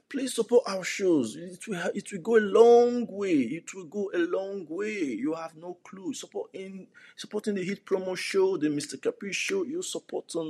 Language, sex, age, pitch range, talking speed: English, male, 50-69, 190-310 Hz, 195 wpm